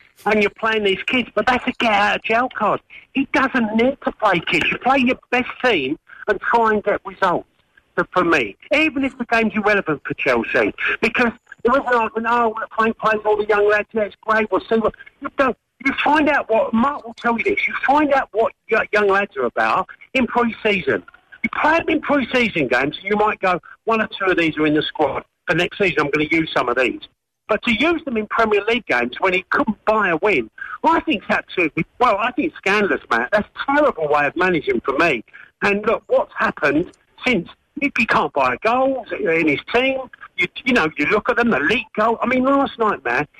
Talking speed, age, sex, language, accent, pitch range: 225 wpm, 50-69, male, English, British, 205-260 Hz